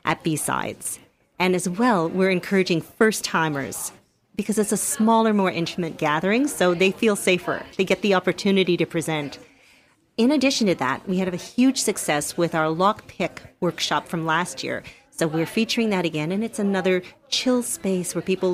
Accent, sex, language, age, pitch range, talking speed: American, female, English, 40-59, 170-205 Hz, 175 wpm